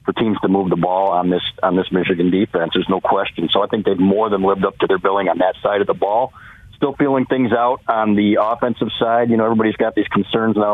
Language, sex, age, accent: English, male, 40-59, American